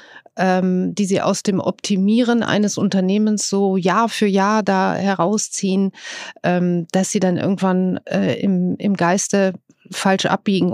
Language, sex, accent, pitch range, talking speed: German, female, German, 180-210 Hz, 115 wpm